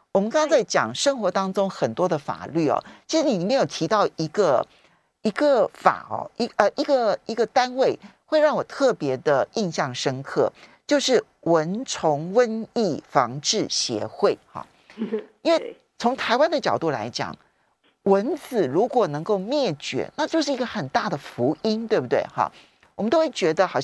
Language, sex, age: Chinese, male, 50-69